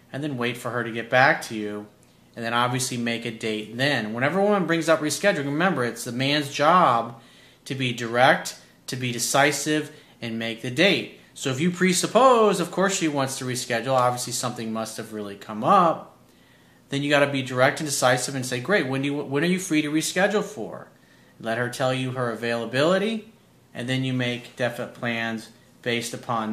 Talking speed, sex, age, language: 205 wpm, male, 40-59, English